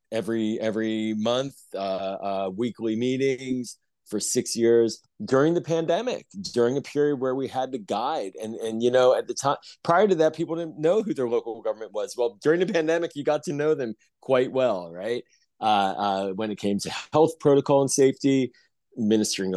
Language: English